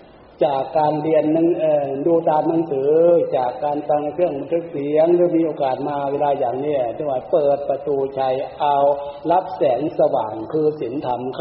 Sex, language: male, Thai